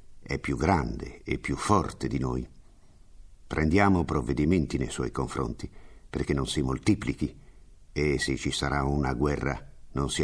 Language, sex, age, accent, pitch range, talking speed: Italian, male, 50-69, native, 70-90 Hz, 145 wpm